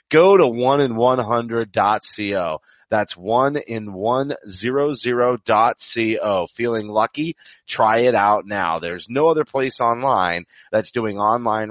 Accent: American